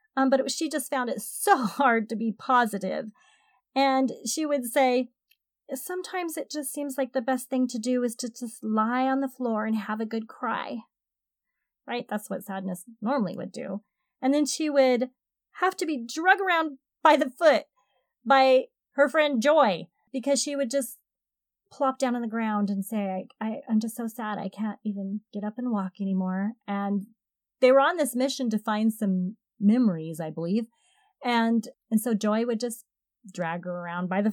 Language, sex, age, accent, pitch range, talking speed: English, female, 30-49, American, 215-275 Hz, 190 wpm